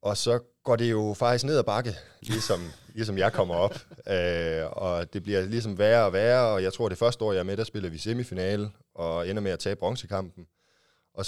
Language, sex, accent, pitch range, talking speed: Danish, male, native, 85-110 Hz, 220 wpm